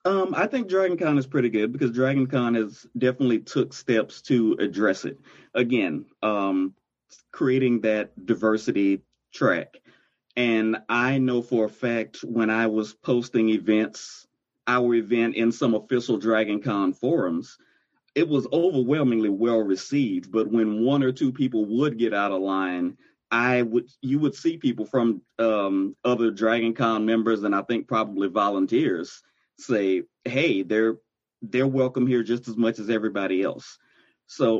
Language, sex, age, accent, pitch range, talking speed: English, male, 30-49, American, 105-130 Hz, 155 wpm